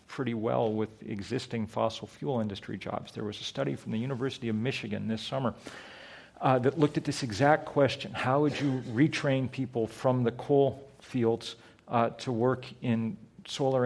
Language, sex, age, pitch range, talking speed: English, male, 40-59, 110-130 Hz, 175 wpm